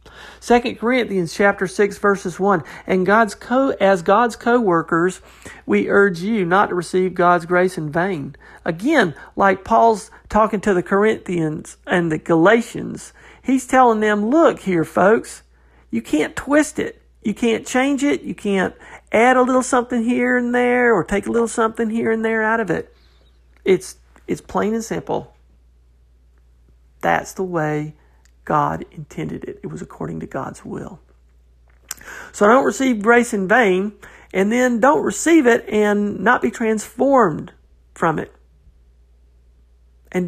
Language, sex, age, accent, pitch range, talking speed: English, male, 50-69, American, 140-230 Hz, 150 wpm